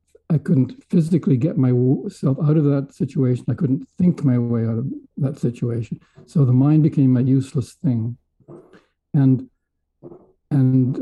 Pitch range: 125-150 Hz